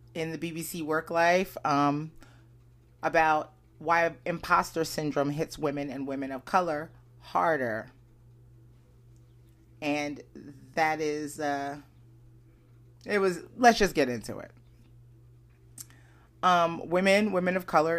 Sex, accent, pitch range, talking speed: female, American, 120-170 Hz, 110 wpm